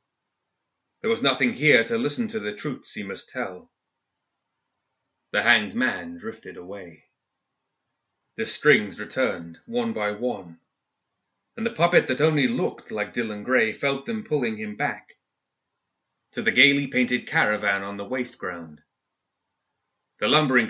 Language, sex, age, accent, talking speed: English, male, 30-49, British, 140 wpm